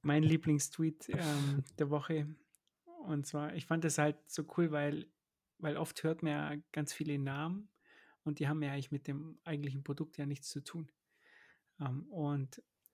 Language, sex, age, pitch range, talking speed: German, male, 30-49, 145-175 Hz, 165 wpm